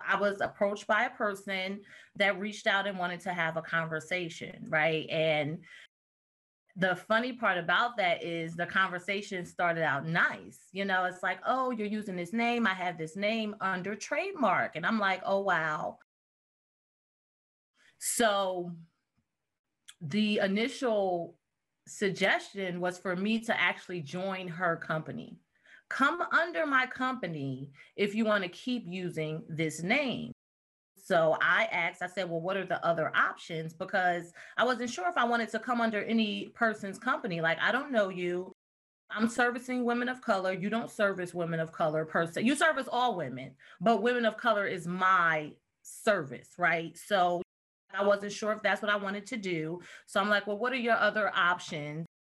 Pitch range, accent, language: 170-220 Hz, American, English